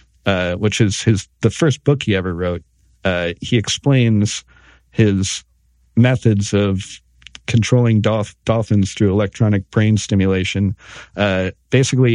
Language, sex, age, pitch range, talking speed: English, male, 40-59, 90-115 Hz, 120 wpm